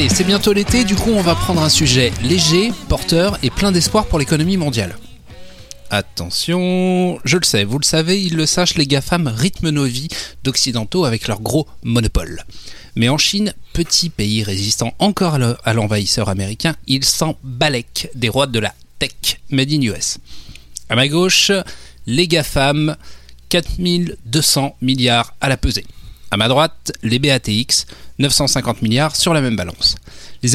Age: 30-49